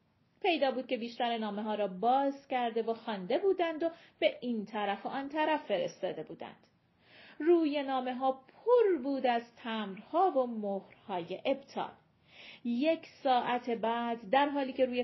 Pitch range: 230-310 Hz